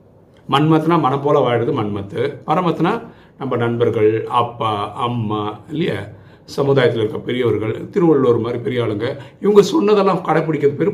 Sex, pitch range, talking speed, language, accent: male, 105-145 Hz, 120 wpm, Tamil, native